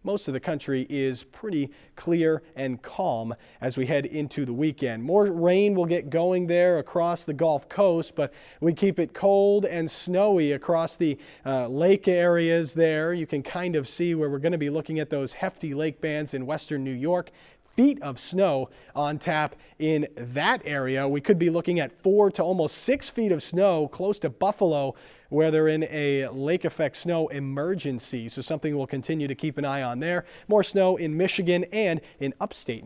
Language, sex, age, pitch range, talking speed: English, male, 40-59, 140-180 Hz, 195 wpm